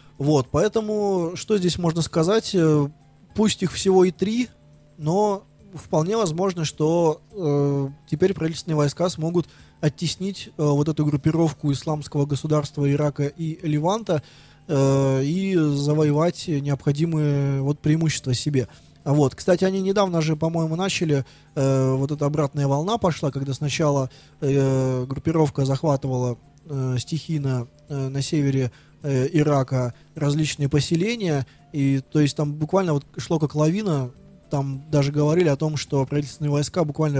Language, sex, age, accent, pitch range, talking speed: Russian, male, 20-39, native, 140-160 Hz, 130 wpm